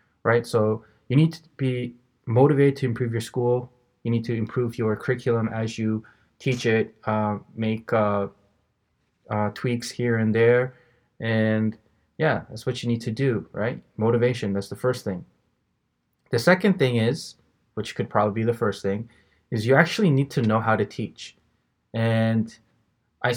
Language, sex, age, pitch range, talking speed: English, male, 20-39, 110-125 Hz, 165 wpm